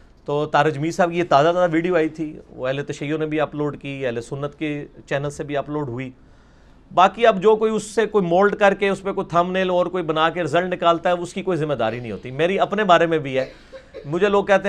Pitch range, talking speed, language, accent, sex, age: 165-225 Hz, 255 wpm, English, Indian, male, 40-59